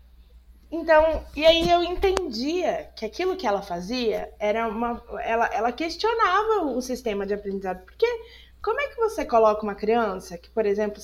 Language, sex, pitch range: Portuguese, female, 205-295 Hz